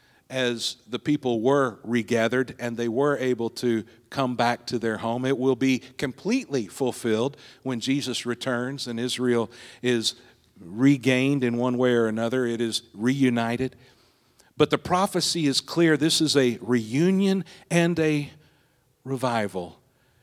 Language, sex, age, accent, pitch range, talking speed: English, male, 50-69, American, 110-130 Hz, 140 wpm